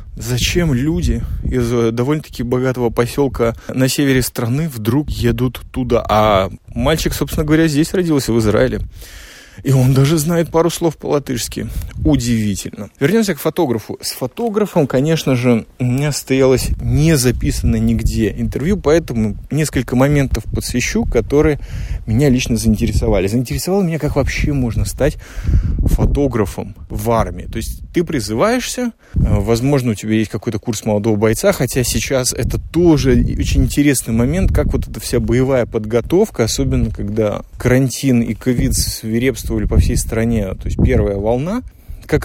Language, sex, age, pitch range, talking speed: Russian, male, 20-39, 110-140 Hz, 140 wpm